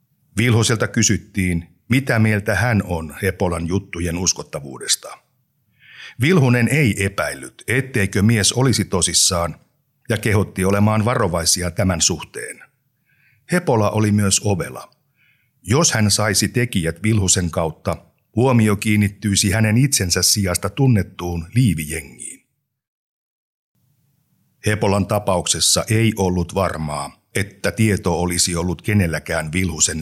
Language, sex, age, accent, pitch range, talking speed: Finnish, male, 60-79, native, 90-115 Hz, 100 wpm